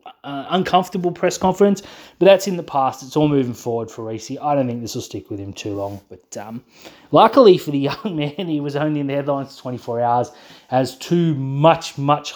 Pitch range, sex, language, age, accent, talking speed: 125-170 Hz, male, English, 20-39, Australian, 215 wpm